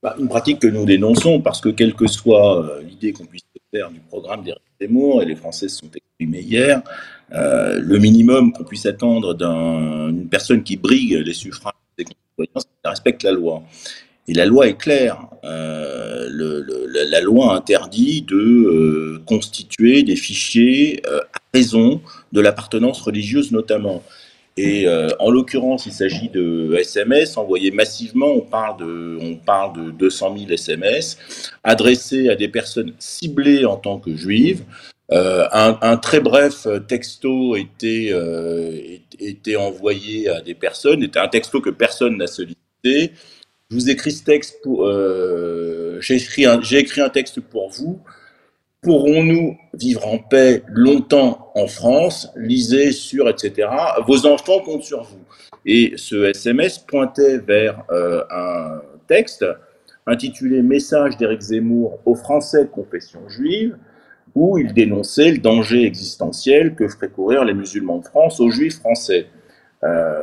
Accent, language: French, French